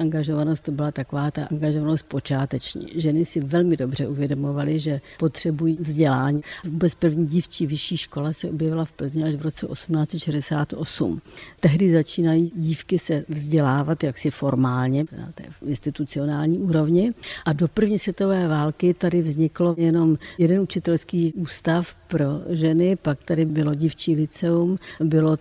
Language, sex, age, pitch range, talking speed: Czech, female, 60-79, 150-170 Hz, 135 wpm